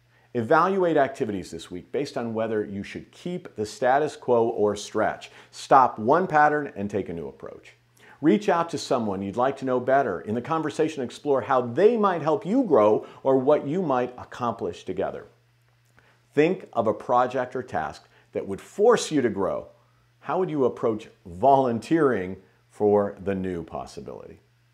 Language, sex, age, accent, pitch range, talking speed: English, male, 50-69, American, 110-155 Hz, 165 wpm